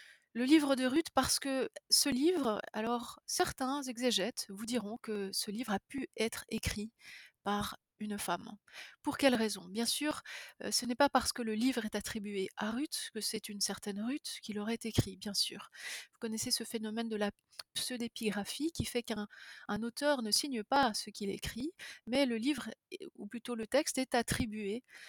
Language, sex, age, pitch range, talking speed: French, female, 30-49, 210-265 Hz, 180 wpm